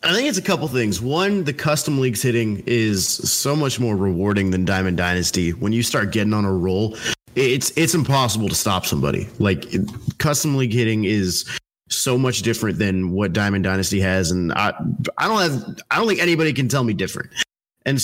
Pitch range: 105-140 Hz